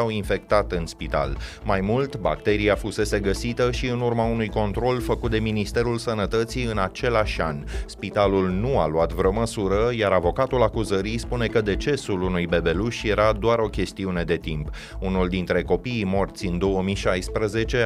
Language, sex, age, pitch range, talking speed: Romanian, male, 30-49, 90-110 Hz, 160 wpm